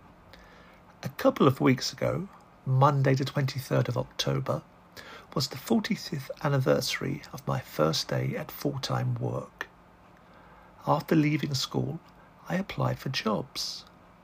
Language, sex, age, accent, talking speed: English, male, 50-69, British, 120 wpm